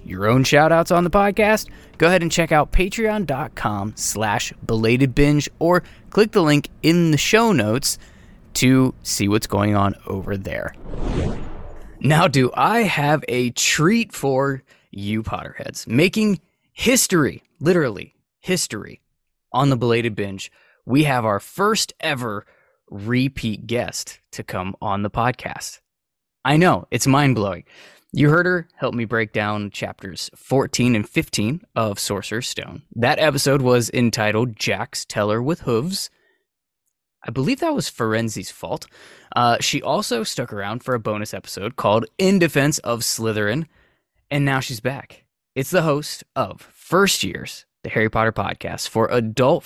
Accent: American